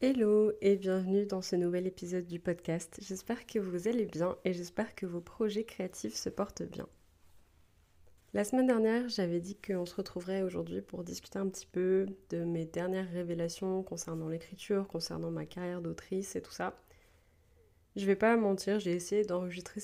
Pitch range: 170-200 Hz